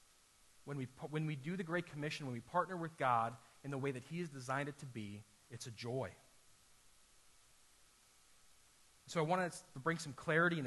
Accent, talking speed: American, 190 wpm